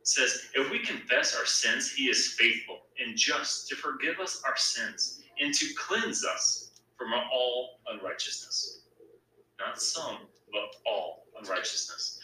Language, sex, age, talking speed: English, male, 30-49, 135 wpm